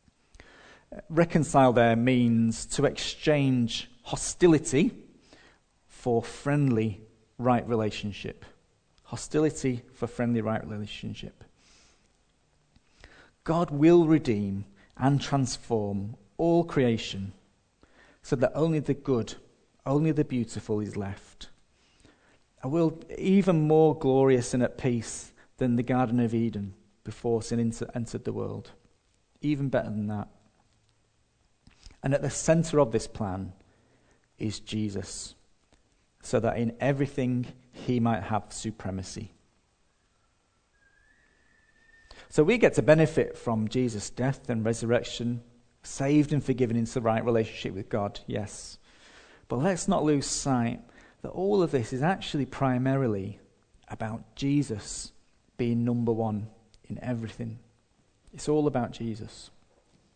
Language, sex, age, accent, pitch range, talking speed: English, male, 40-59, British, 110-135 Hz, 115 wpm